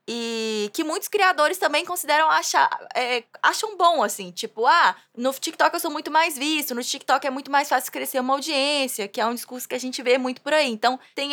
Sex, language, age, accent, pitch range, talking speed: female, English, 20-39, Brazilian, 230-315 Hz, 225 wpm